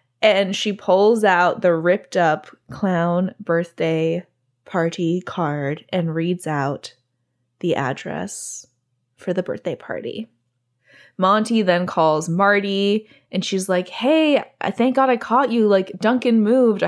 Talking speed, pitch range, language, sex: 130 wpm, 170-215 Hz, English, female